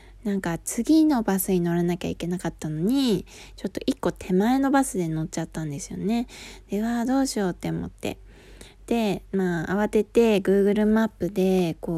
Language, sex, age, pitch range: Japanese, female, 20-39, 170-230 Hz